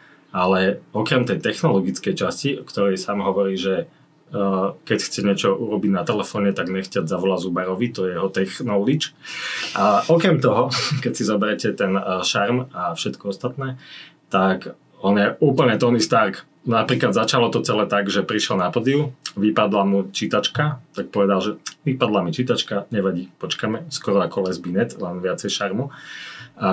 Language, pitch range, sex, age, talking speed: Slovak, 100-130 Hz, male, 30-49, 155 wpm